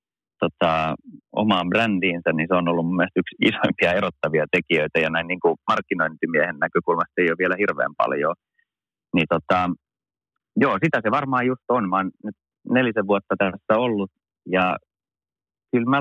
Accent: native